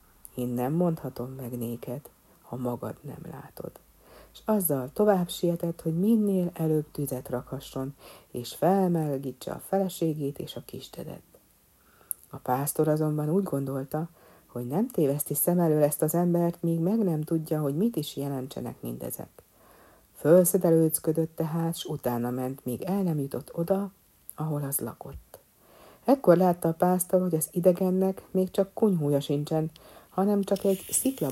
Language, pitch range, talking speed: Hungarian, 135-175 Hz, 145 wpm